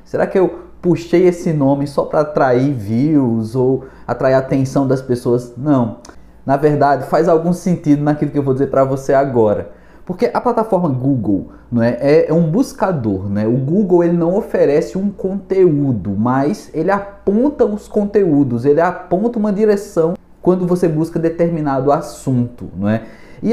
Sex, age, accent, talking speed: male, 20-39, Brazilian, 165 wpm